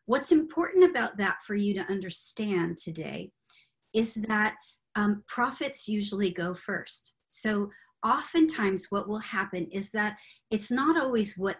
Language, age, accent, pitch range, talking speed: English, 40-59, American, 180-225 Hz, 140 wpm